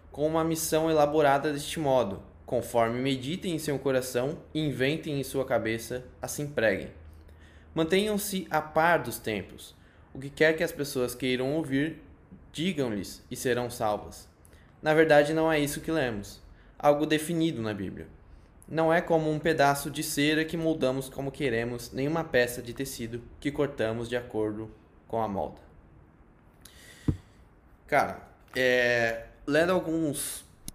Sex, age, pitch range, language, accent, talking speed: male, 10-29, 105-145 Hz, Portuguese, Brazilian, 140 wpm